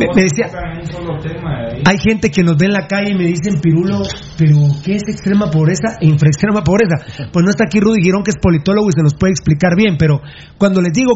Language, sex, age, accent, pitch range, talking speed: Spanish, male, 40-59, Mexican, 160-245 Hz, 225 wpm